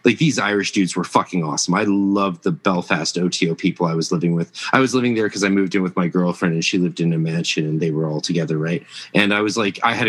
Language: English